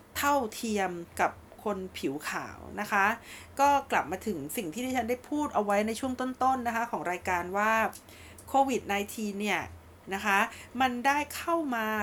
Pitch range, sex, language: 195-250 Hz, female, Thai